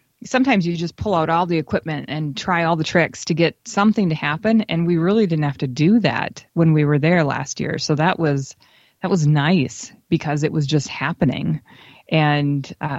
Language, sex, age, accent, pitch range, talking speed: English, female, 30-49, American, 150-175 Hz, 205 wpm